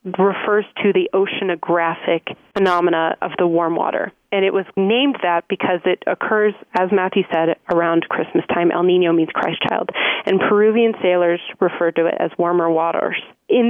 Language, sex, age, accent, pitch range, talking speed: English, female, 30-49, American, 175-215 Hz, 165 wpm